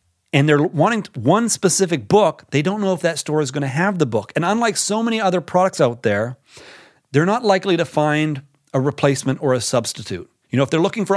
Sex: male